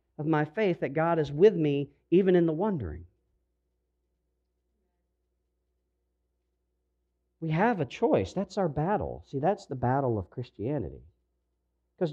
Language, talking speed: English, 130 wpm